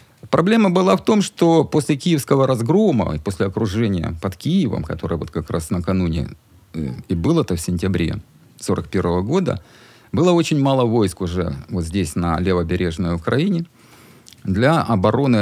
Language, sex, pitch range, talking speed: Ukrainian, male, 95-125 Hz, 130 wpm